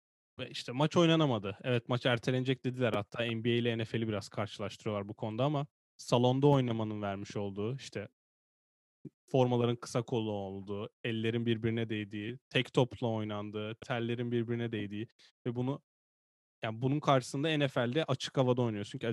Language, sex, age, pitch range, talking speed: Turkish, male, 10-29, 110-130 Hz, 140 wpm